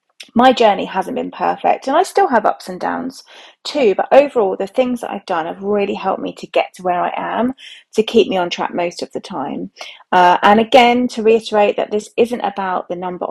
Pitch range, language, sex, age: 180-240 Hz, English, female, 30-49